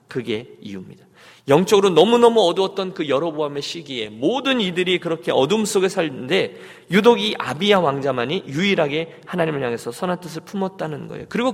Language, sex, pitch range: Korean, male, 135-205 Hz